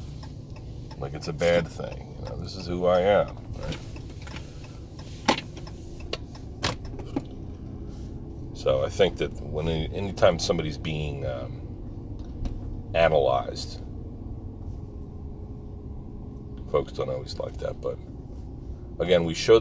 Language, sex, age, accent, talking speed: English, male, 40-59, American, 100 wpm